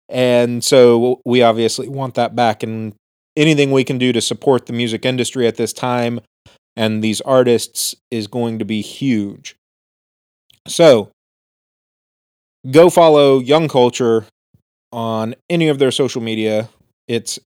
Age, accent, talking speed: 30-49, American, 140 wpm